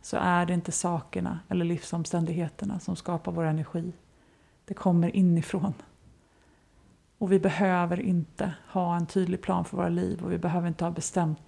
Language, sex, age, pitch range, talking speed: Swedish, female, 30-49, 170-190 Hz, 160 wpm